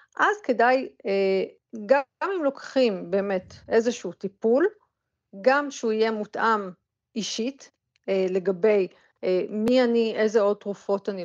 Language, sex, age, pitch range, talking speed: Hebrew, female, 40-59, 190-250 Hz, 105 wpm